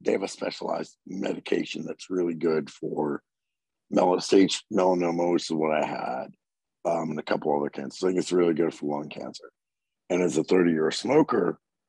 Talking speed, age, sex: 175 wpm, 50-69, male